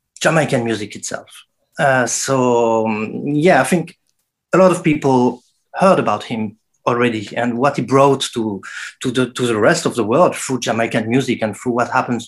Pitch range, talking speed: 120-165 Hz, 175 wpm